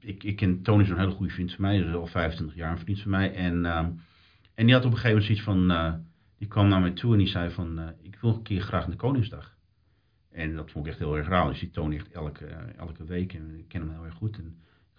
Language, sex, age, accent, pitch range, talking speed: English, male, 50-69, Dutch, 90-110 Hz, 295 wpm